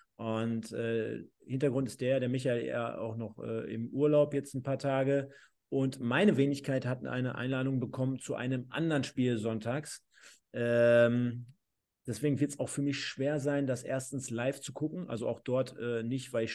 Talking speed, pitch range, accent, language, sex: 180 wpm, 115-145 Hz, German, German, male